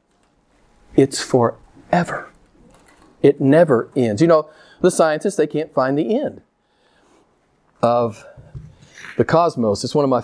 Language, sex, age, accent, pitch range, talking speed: English, male, 40-59, American, 125-155 Hz, 125 wpm